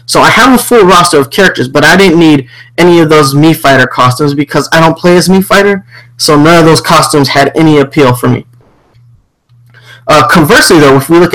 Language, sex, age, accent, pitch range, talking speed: English, male, 20-39, American, 130-165 Hz, 215 wpm